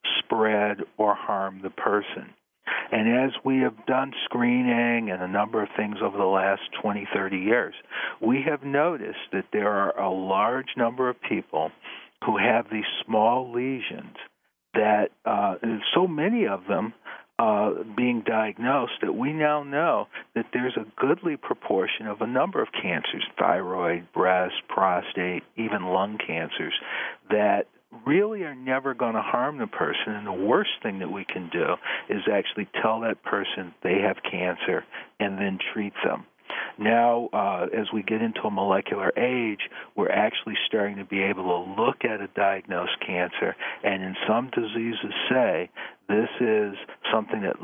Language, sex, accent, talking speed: English, male, American, 160 wpm